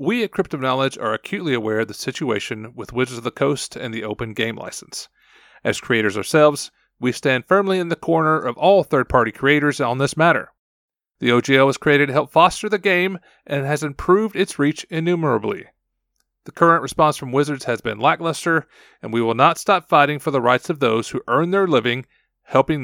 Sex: male